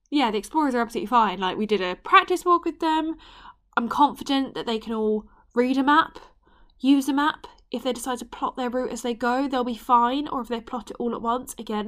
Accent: British